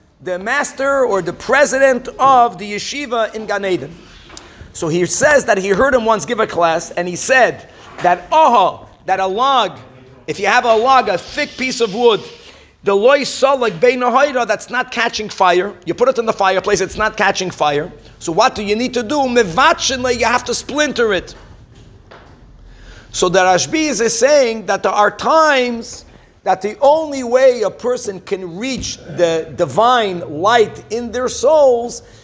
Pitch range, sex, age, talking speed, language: 190-265 Hz, male, 50-69, 175 wpm, English